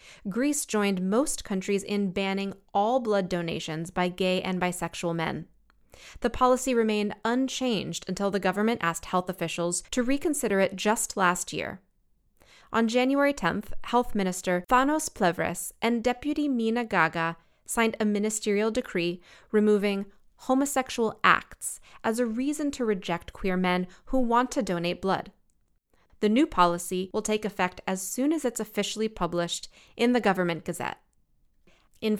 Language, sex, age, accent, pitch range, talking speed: English, female, 20-39, American, 180-240 Hz, 145 wpm